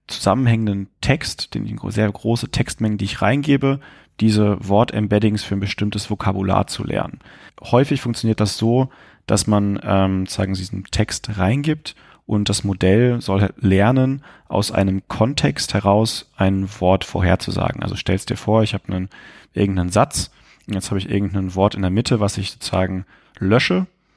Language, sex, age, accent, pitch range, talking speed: German, male, 30-49, German, 95-110 Hz, 155 wpm